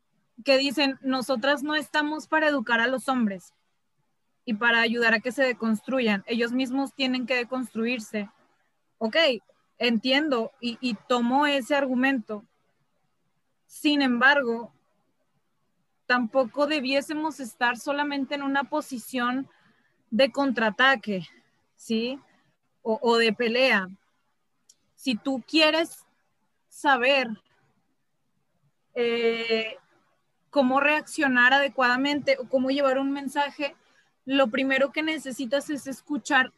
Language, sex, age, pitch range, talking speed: Spanish, female, 20-39, 235-275 Hz, 105 wpm